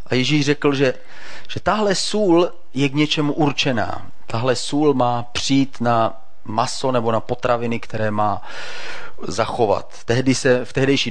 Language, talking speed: Czech, 145 wpm